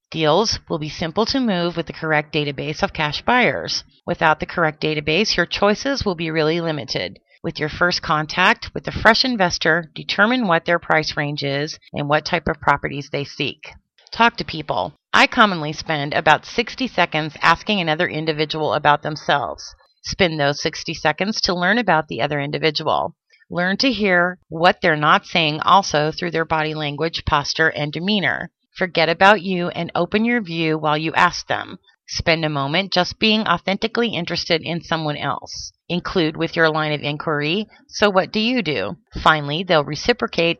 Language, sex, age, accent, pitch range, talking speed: English, female, 30-49, American, 155-190 Hz, 175 wpm